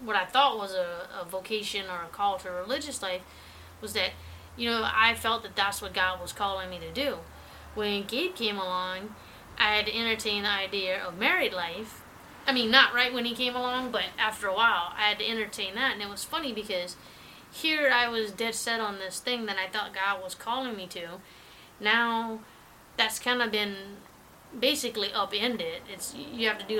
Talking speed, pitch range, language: 205 wpm, 190-230 Hz, English